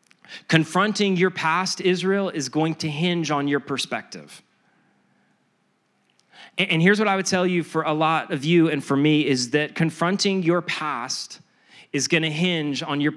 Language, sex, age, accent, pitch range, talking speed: English, male, 30-49, American, 150-180 Hz, 170 wpm